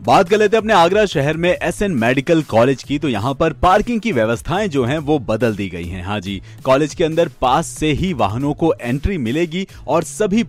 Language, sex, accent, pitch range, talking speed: Hindi, male, native, 115-160 Hz, 225 wpm